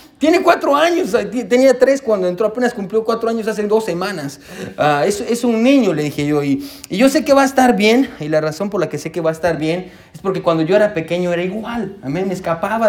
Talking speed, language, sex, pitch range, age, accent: 250 wpm, Spanish, male, 150-225 Hz, 30-49, Mexican